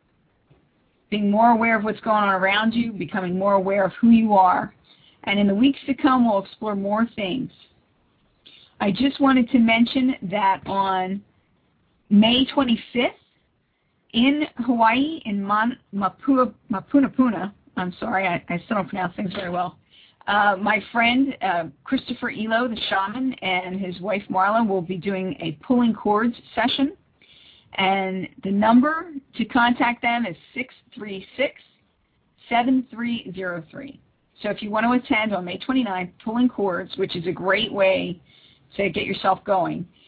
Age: 50-69